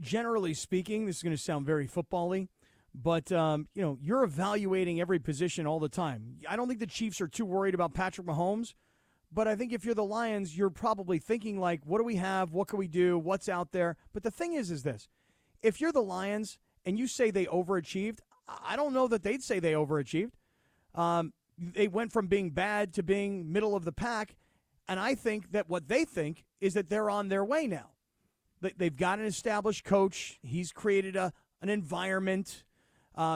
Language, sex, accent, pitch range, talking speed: English, male, American, 175-220 Hz, 205 wpm